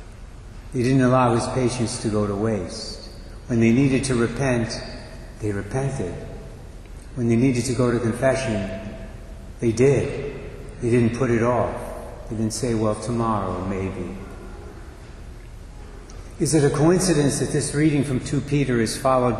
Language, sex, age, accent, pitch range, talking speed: English, male, 60-79, American, 110-125 Hz, 150 wpm